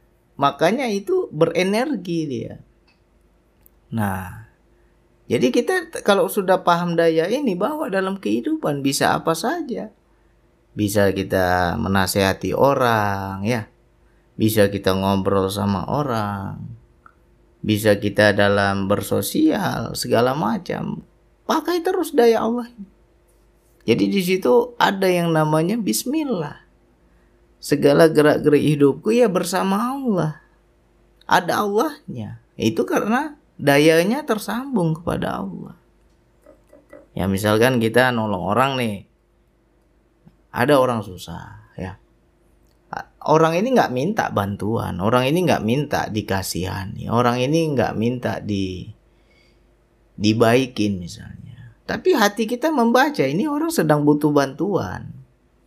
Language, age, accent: Indonesian, 30-49, native